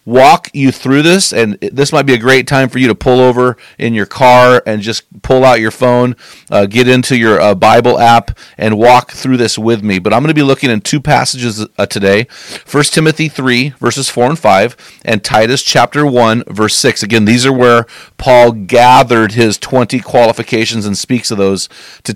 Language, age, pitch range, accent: English, 40-59, 115-140 Hz, American